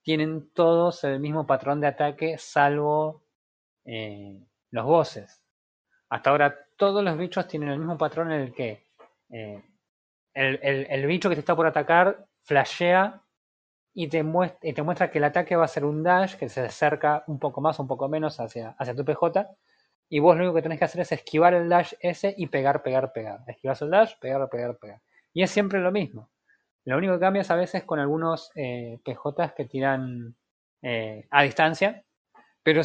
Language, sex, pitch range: Spanish, male, 135-170 Hz